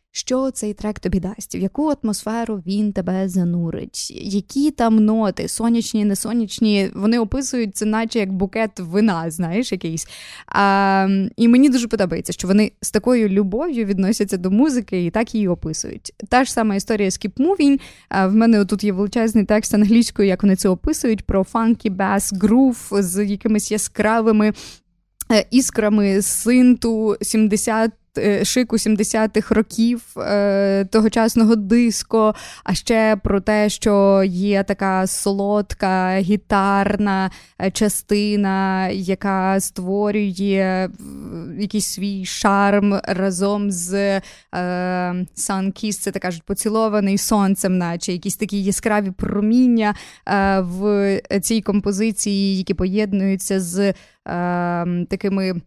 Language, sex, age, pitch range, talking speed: Ukrainian, female, 20-39, 195-220 Hz, 125 wpm